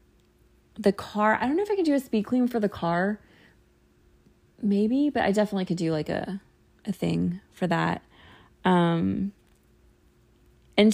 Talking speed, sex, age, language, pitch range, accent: 160 wpm, female, 20-39, English, 165-205 Hz, American